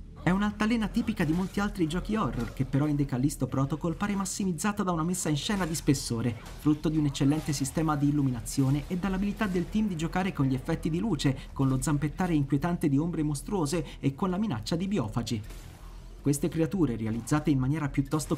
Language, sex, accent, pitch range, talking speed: Italian, male, native, 135-180 Hz, 195 wpm